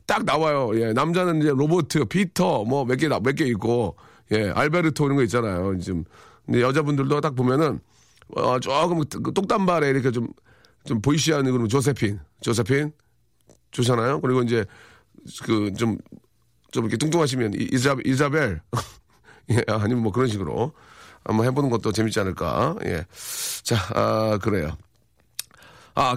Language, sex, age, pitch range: Korean, male, 40-59, 110-150 Hz